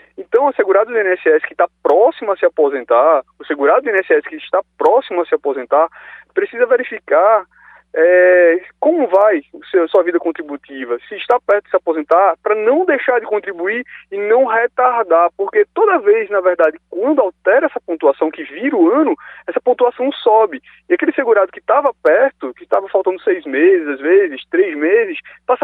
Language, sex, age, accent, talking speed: Portuguese, male, 20-39, Brazilian, 175 wpm